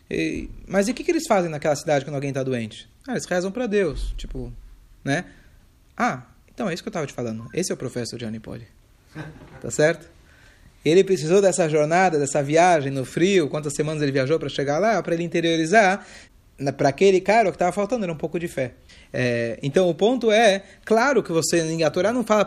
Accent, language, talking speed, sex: Brazilian, Portuguese, 210 wpm, male